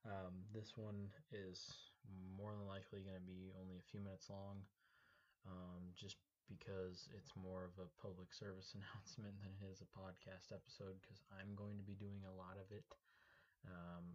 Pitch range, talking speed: 90-100 Hz, 180 wpm